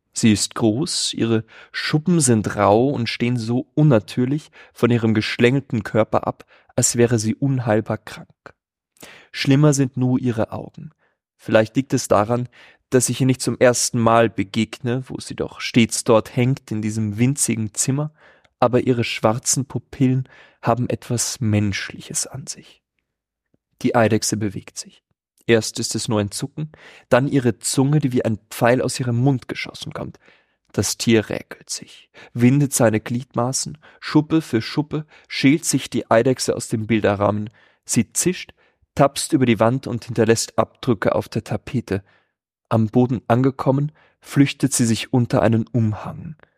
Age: 30-49